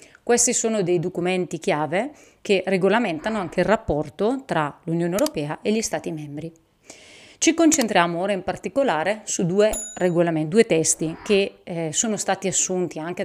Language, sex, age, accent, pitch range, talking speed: Italian, female, 30-49, native, 165-220 Hz, 145 wpm